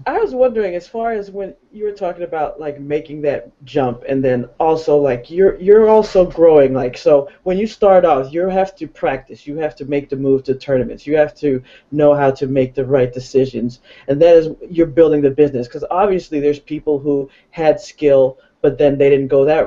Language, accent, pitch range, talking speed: English, American, 140-175 Hz, 215 wpm